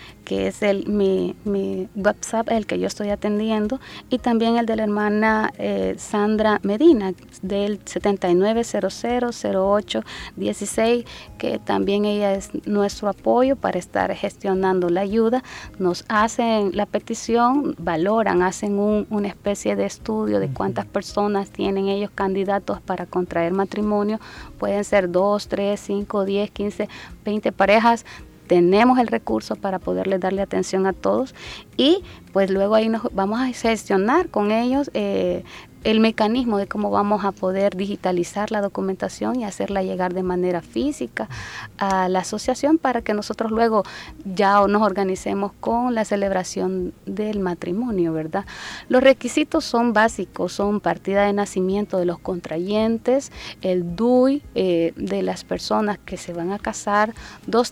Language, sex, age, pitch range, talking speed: Spanish, female, 30-49, 185-225 Hz, 140 wpm